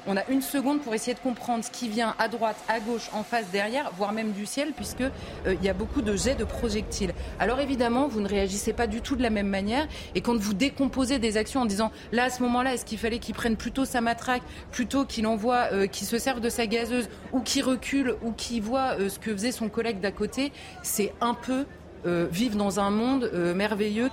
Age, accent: 30-49, French